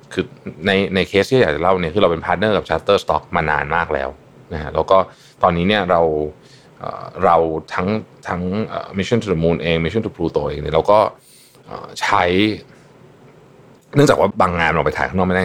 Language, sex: Thai, male